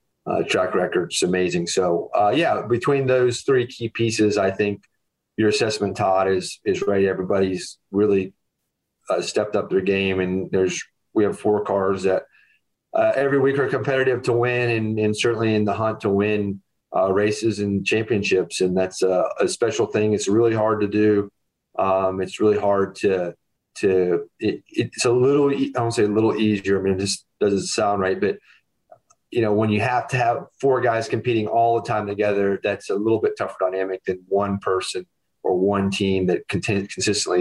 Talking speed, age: 185 wpm, 30-49